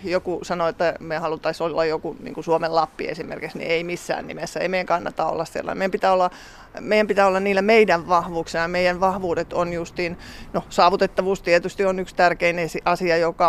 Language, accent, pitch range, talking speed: Finnish, native, 165-190 Hz, 180 wpm